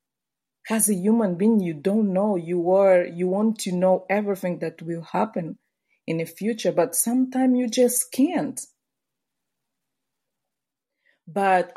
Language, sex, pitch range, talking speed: English, female, 170-200 Hz, 135 wpm